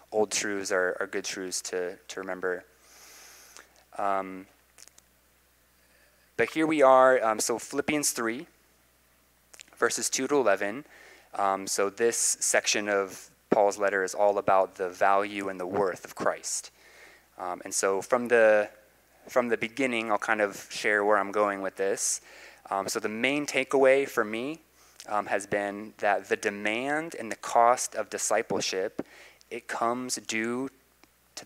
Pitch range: 95-120 Hz